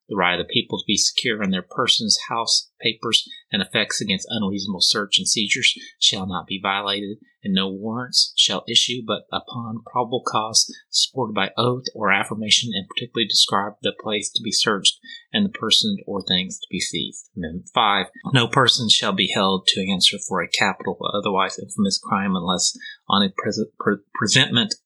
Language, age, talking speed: English, 30-49, 185 wpm